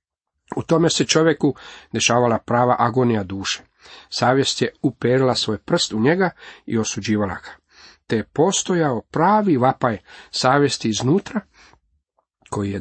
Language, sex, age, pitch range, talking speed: Croatian, male, 40-59, 105-135 Hz, 125 wpm